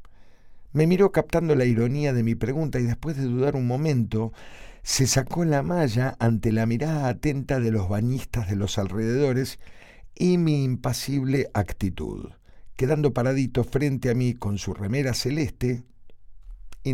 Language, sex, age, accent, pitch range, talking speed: Spanish, male, 50-69, Argentinian, 95-135 Hz, 150 wpm